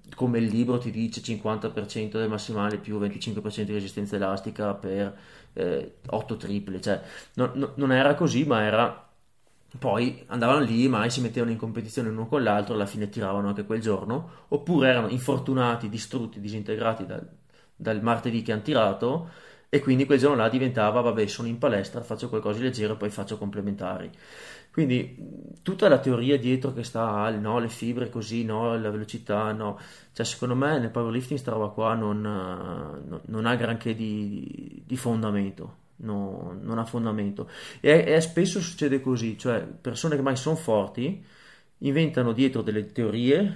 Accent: native